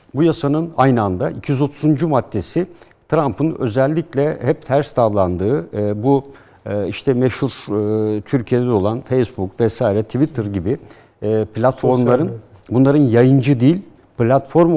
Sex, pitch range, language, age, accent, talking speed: male, 110-150 Hz, Turkish, 60-79, native, 100 wpm